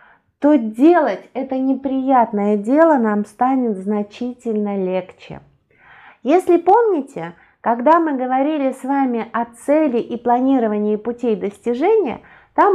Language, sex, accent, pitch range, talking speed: Russian, female, native, 215-280 Hz, 110 wpm